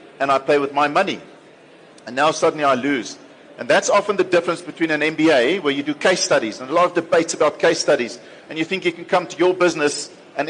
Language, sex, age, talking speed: English, male, 50-69, 240 wpm